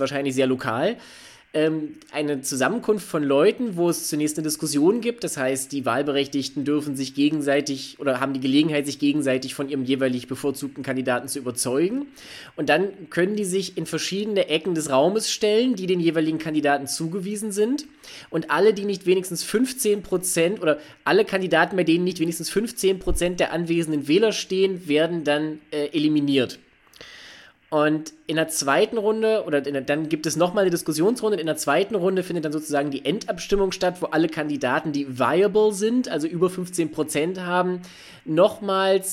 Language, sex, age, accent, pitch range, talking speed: German, male, 20-39, German, 145-195 Hz, 170 wpm